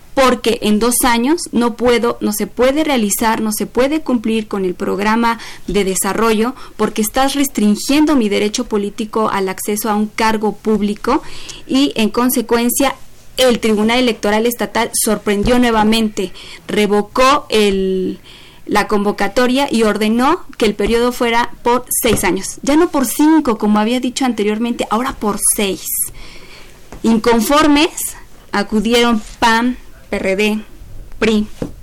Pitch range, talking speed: 210-245 Hz, 130 wpm